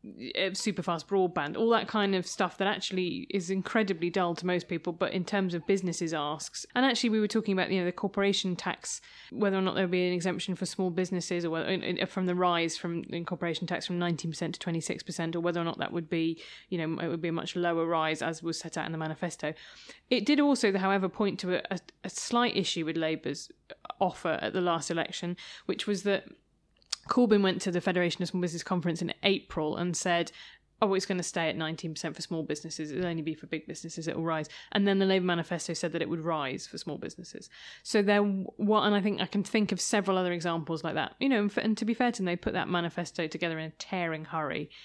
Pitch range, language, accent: 165-195 Hz, English, British